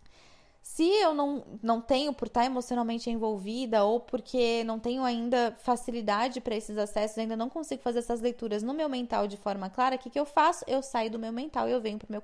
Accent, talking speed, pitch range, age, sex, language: Brazilian, 225 wpm, 225-285 Hz, 20-39, female, Portuguese